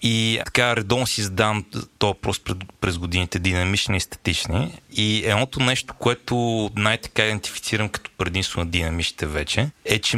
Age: 30-49